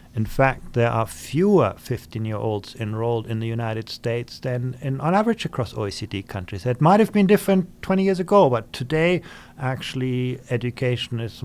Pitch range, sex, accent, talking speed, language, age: 120-150 Hz, male, German, 155 wpm, English, 50-69